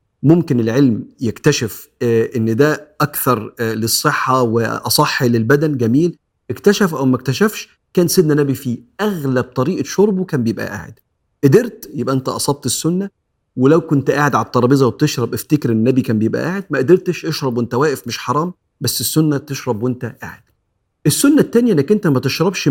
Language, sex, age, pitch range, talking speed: Arabic, male, 40-59, 115-165 Hz, 155 wpm